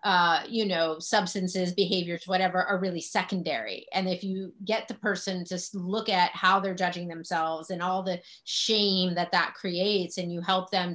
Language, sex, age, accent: English, female, 30-49, American